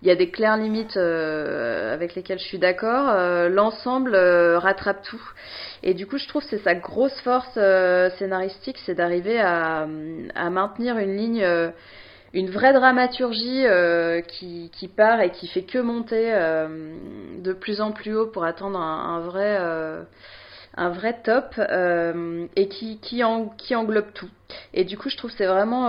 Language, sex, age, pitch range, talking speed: French, female, 20-39, 180-225 Hz, 185 wpm